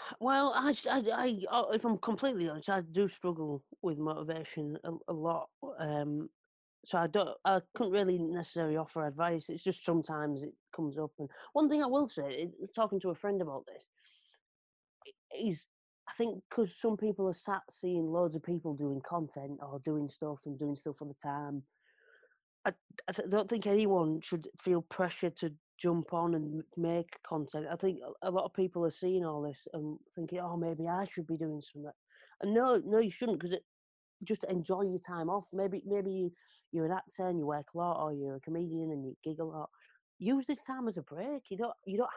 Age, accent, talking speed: 30-49, British, 200 wpm